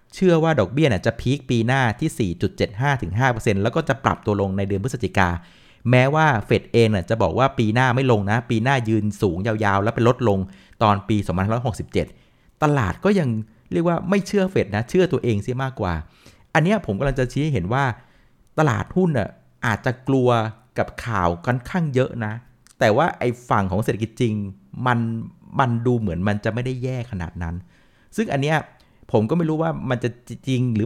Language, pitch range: Thai, 105-130 Hz